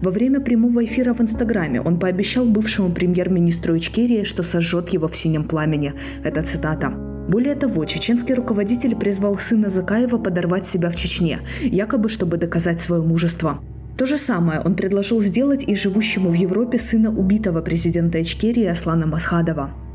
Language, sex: Russian, female